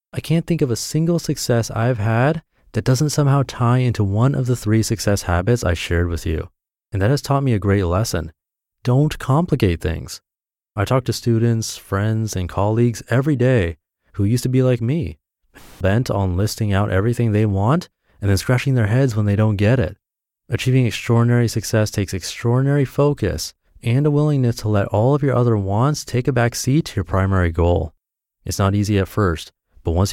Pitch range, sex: 95-120 Hz, male